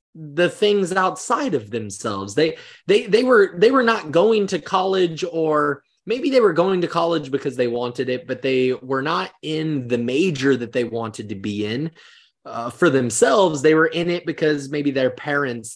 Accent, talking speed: American, 190 wpm